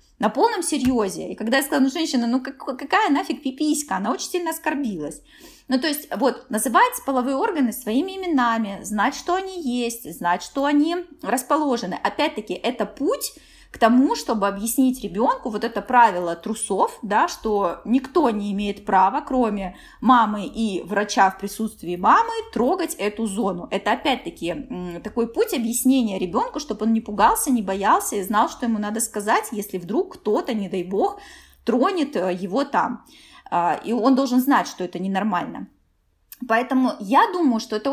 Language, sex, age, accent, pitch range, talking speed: Russian, female, 20-39, native, 205-265 Hz, 160 wpm